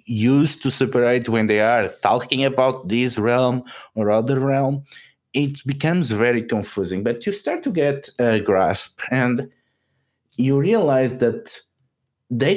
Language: English